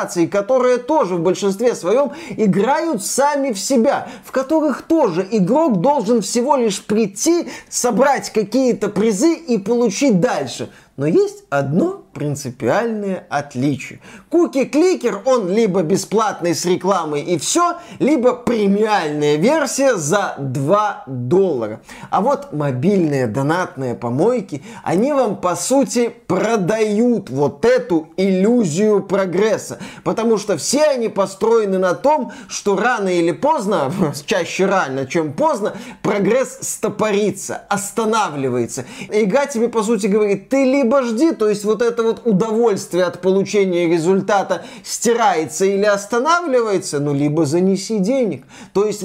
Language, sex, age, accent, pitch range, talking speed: Russian, male, 20-39, native, 185-255 Hz, 120 wpm